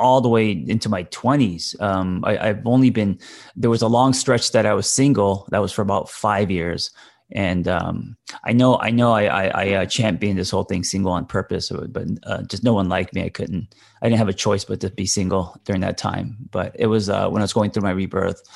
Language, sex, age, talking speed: English, male, 30-49, 245 wpm